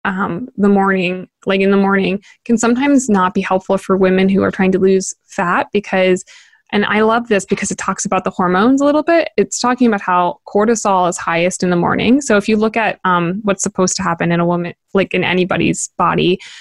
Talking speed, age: 220 wpm, 20-39